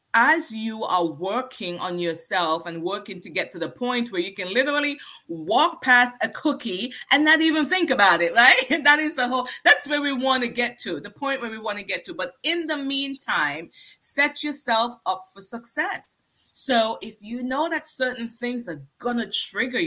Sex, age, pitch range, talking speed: female, 30-49, 185-285 Hz, 200 wpm